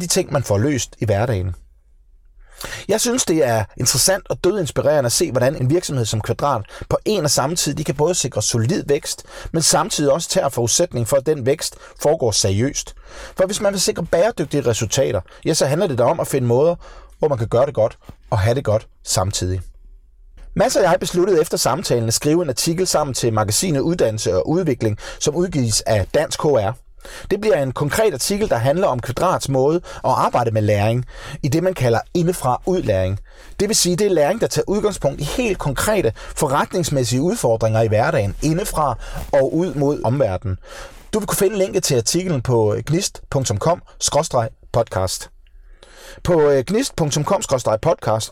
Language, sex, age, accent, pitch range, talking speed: Danish, male, 30-49, native, 115-175 Hz, 175 wpm